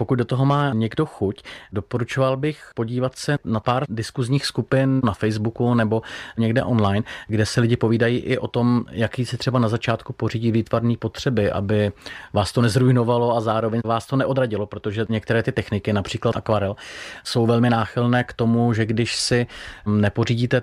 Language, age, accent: Czech, 30-49, native